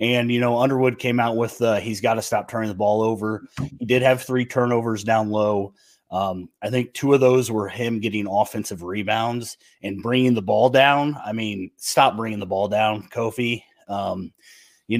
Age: 30-49